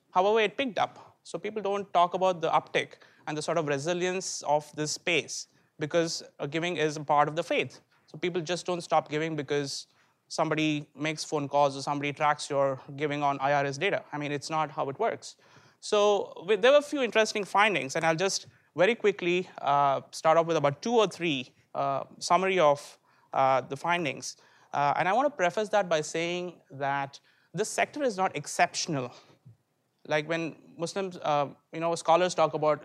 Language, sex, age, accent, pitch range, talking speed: English, male, 20-39, Indian, 145-180 Hz, 190 wpm